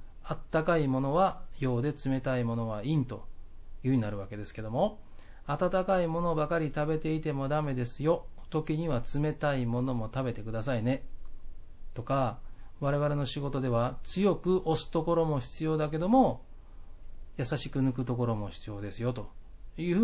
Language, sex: Japanese, male